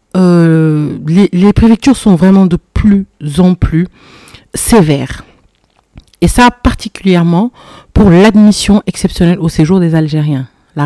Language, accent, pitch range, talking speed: French, French, 155-210 Hz, 120 wpm